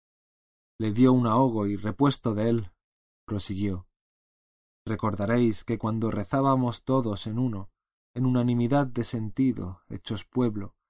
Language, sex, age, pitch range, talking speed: Spanish, male, 30-49, 95-120 Hz, 120 wpm